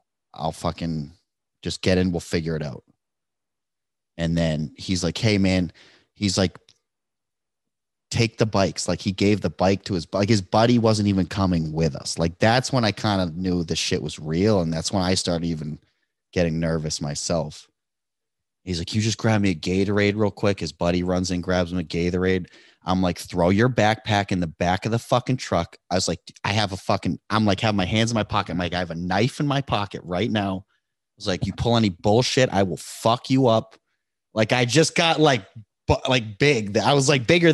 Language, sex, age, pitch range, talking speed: English, male, 30-49, 90-115 Hz, 215 wpm